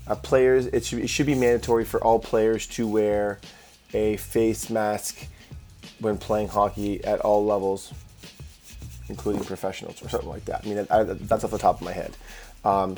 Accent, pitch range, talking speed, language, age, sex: American, 100-115 Hz, 170 wpm, English, 20-39, male